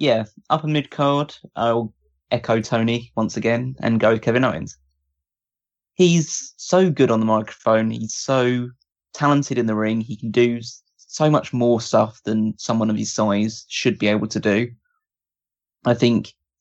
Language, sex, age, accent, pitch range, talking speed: English, male, 20-39, British, 110-125 Hz, 165 wpm